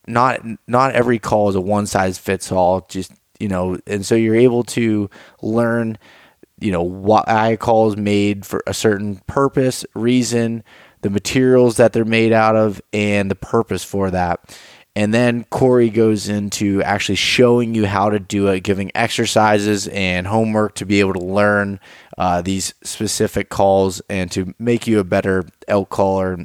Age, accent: 20-39, American